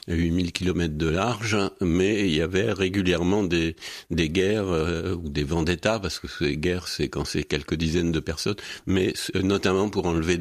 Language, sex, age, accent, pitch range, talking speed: French, male, 60-79, French, 80-95 Hz, 180 wpm